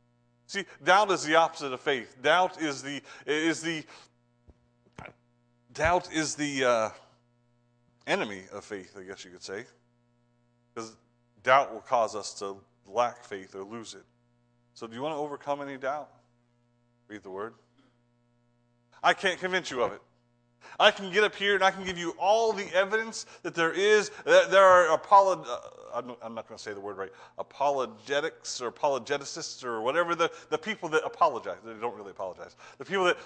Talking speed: 175 wpm